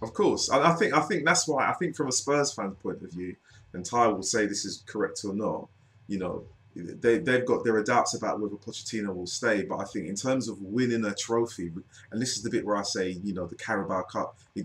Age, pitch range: 30-49, 100-120 Hz